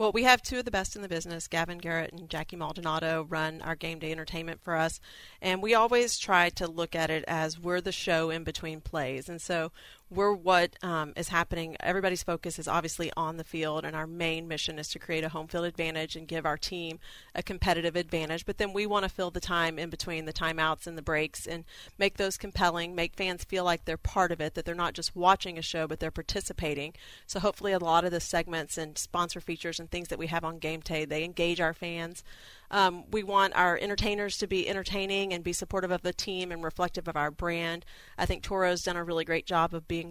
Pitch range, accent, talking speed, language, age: 160-185 Hz, American, 235 wpm, English, 30-49